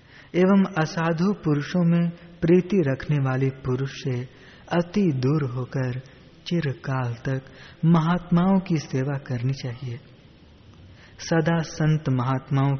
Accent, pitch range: native, 125-160 Hz